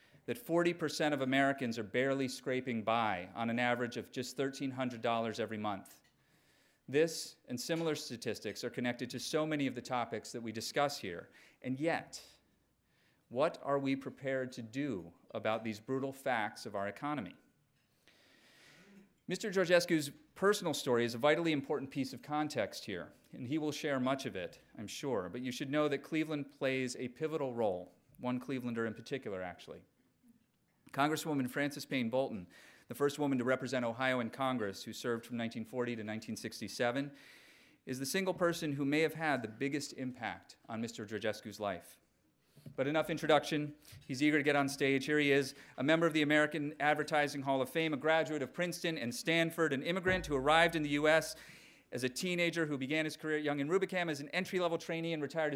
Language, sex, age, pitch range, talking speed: English, male, 40-59, 125-155 Hz, 180 wpm